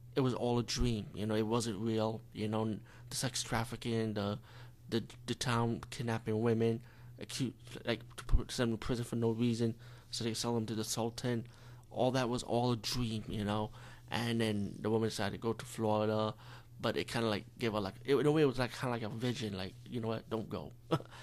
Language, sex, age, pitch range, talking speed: English, male, 30-49, 115-125 Hz, 225 wpm